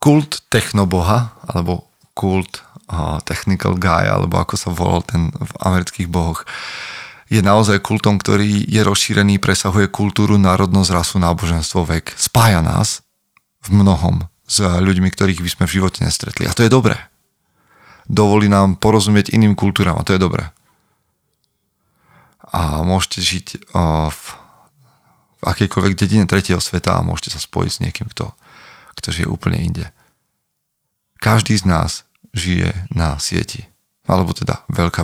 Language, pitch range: Slovak, 90-110 Hz